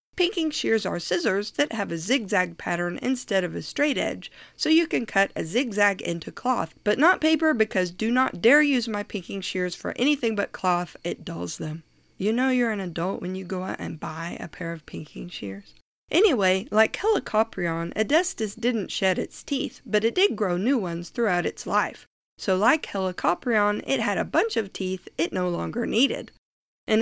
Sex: female